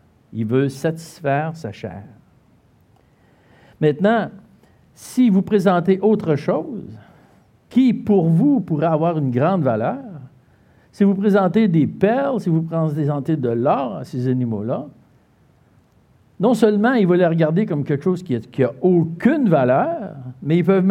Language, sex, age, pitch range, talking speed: French, male, 60-79, 135-215 Hz, 145 wpm